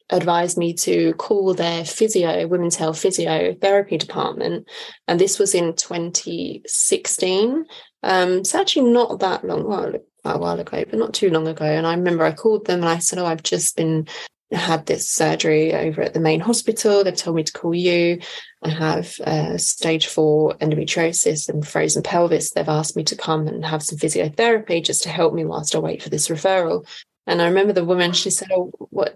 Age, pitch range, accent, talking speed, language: 20-39, 160-195 Hz, British, 195 wpm, English